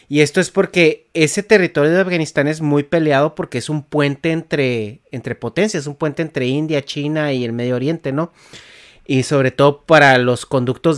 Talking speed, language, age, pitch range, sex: 190 wpm, Spanish, 30-49, 130-165 Hz, male